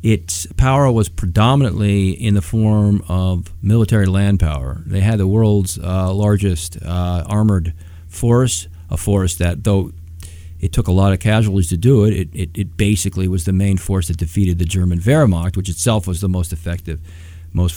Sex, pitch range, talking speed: male, 90-115 Hz, 180 wpm